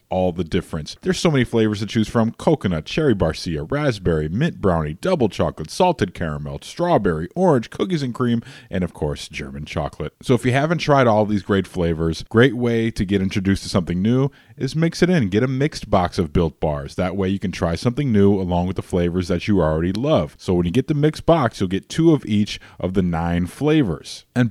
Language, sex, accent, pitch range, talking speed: English, male, American, 90-125 Hz, 220 wpm